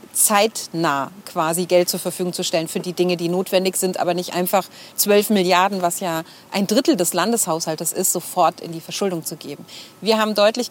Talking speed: 190 wpm